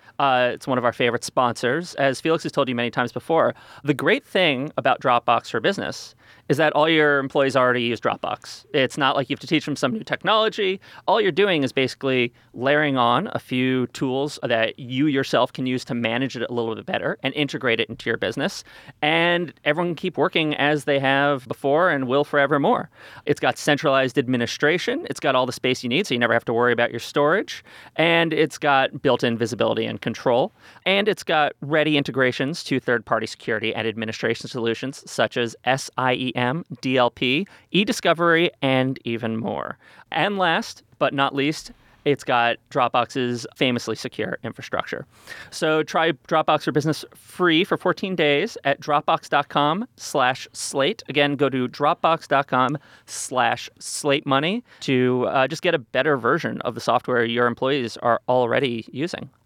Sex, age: male, 30-49